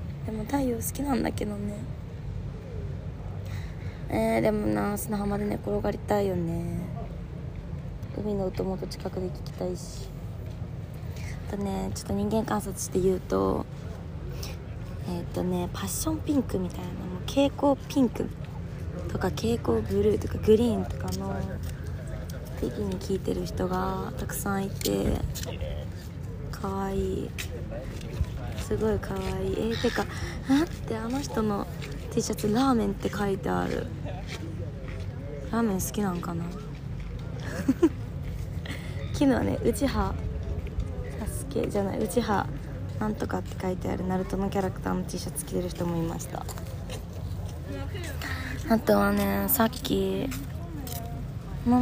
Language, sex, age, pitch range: Japanese, female, 20-39, 95-140 Hz